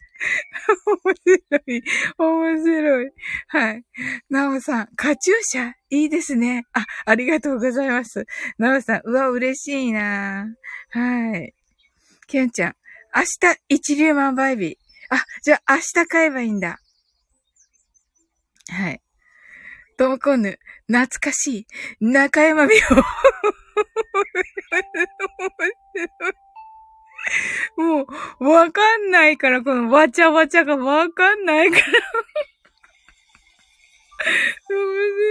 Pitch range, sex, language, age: 265-390 Hz, female, Japanese, 20-39